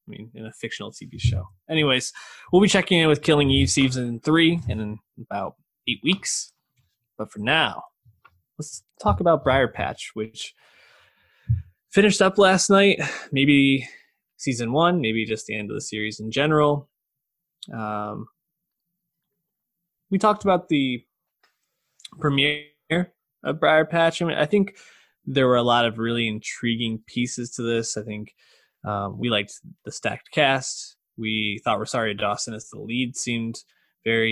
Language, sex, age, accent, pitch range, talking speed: English, male, 20-39, American, 110-155 Hz, 150 wpm